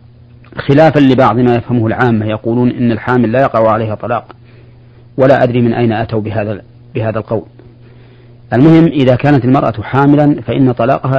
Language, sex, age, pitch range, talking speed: Arabic, male, 40-59, 120-130 Hz, 145 wpm